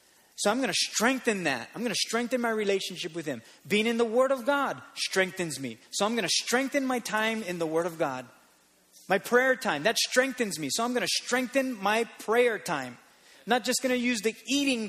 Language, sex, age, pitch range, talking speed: English, male, 30-49, 155-230 Hz, 220 wpm